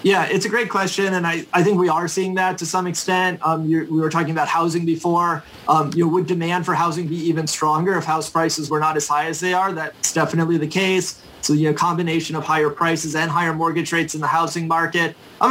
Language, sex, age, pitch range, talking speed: English, male, 20-39, 160-190 Hz, 230 wpm